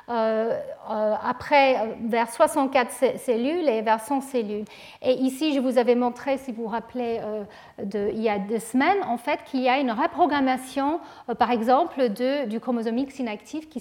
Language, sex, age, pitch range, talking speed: French, female, 40-59, 230-280 Hz, 175 wpm